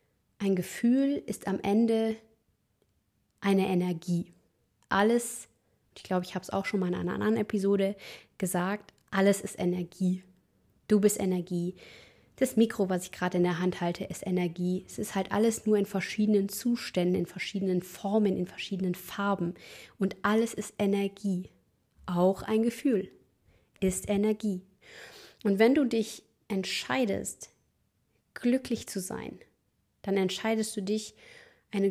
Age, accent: 20-39, German